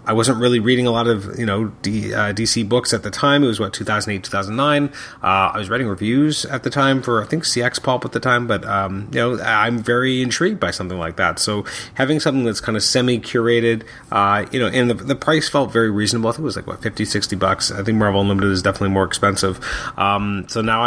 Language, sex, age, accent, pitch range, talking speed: English, male, 30-49, American, 100-125 Hz, 240 wpm